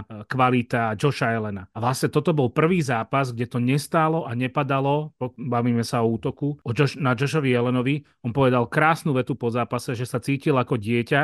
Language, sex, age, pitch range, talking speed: Slovak, male, 30-49, 120-140 Hz, 180 wpm